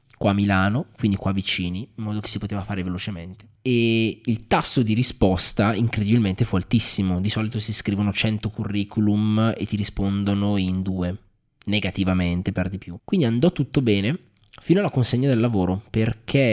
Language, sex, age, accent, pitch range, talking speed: Italian, male, 20-39, native, 95-115 Hz, 165 wpm